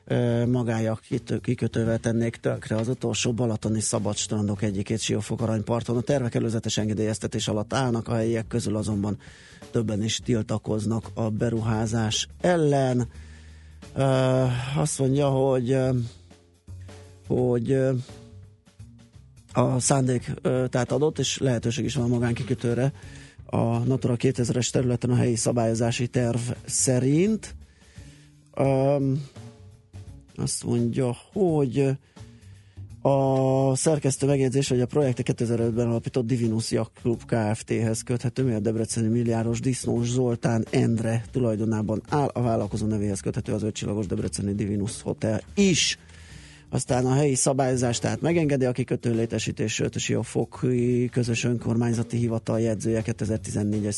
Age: 30-49